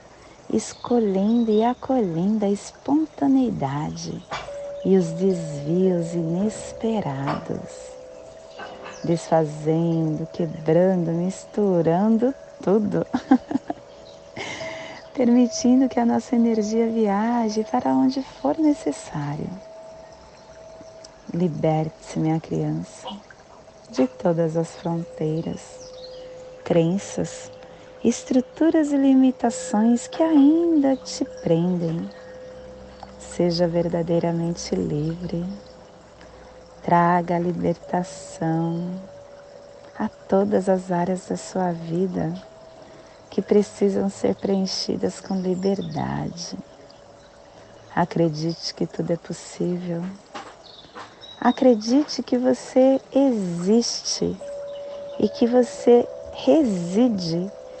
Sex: female